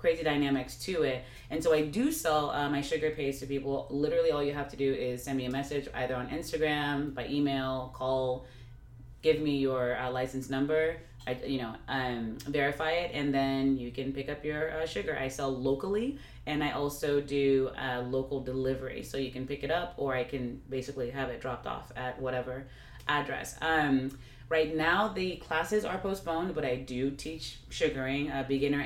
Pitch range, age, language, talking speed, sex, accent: 130-160 Hz, 30-49, English, 200 wpm, female, American